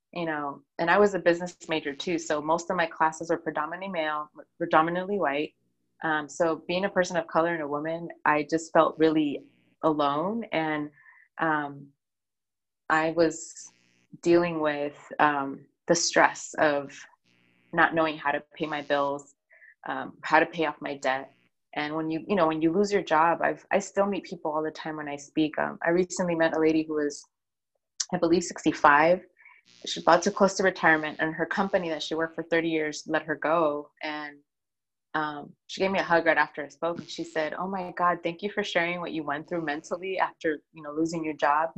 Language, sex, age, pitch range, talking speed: English, female, 20-39, 150-170 Hz, 200 wpm